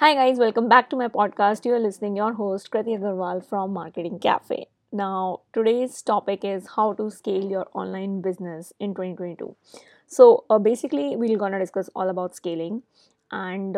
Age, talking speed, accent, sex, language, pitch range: 20-39, 175 wpm, Indian, female, English, 195-245 Hz